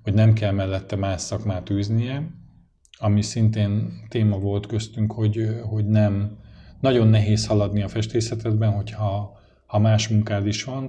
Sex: male